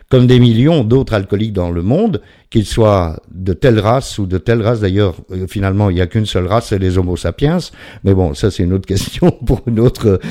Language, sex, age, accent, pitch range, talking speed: French, male, 50-69, French, 95-130 Hz, 225 wpm